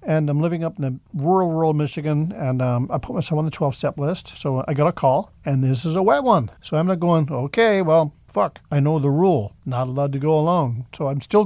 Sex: male